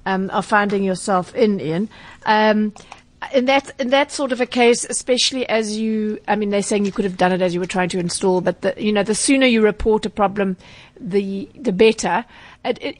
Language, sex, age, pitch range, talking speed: English, female, 40-59, 185-215 Hz, 220 wpm